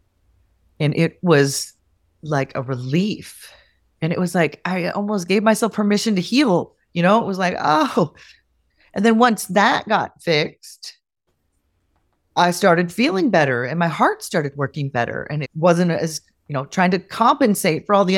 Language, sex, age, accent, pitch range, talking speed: English, female, 30-49, American, 145-200 Hz, 170 wpm